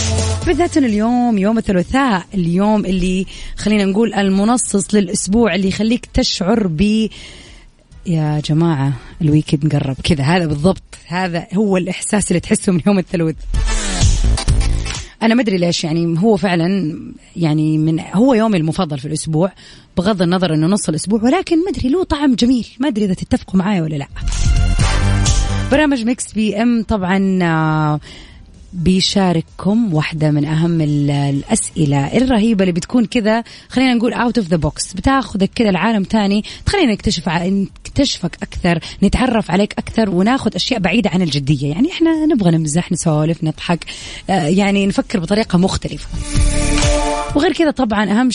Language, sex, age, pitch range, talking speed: English, female, 20-39, 160-225 Hz, 135 wpm